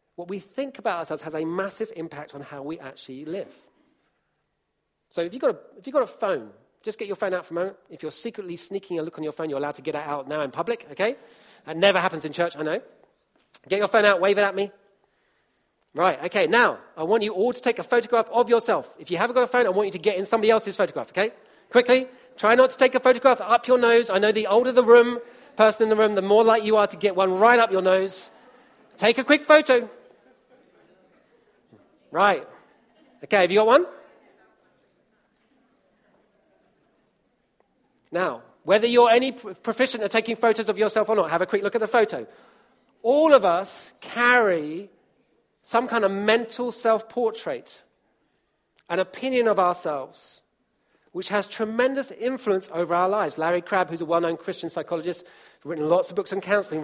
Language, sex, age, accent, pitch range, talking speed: English, male, 40-59, British, 175-235 Hz, 200 wpm